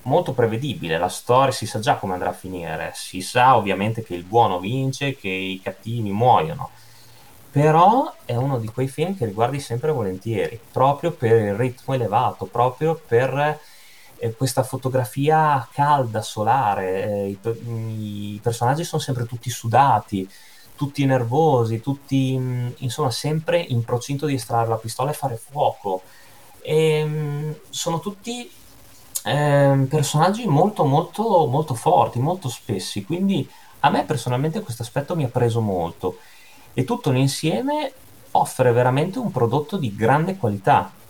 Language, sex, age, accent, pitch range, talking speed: Italian, male, 20-39, native, 110-145 Hz, 140 wpm